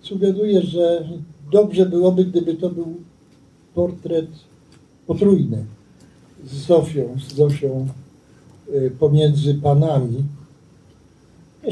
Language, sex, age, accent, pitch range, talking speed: Polish, male, 60-79, native, 150-190 Hz, 80 wpm